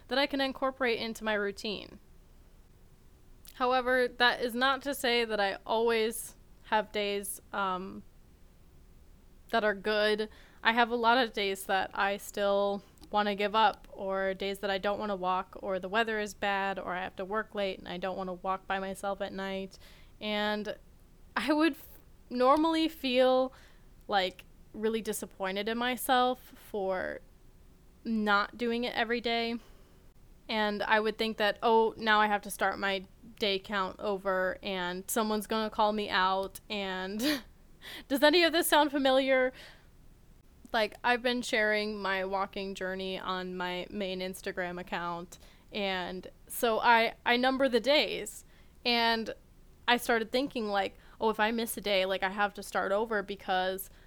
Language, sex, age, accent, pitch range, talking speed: English, female, 10-29, American, 195-240 Hz, 160 wpm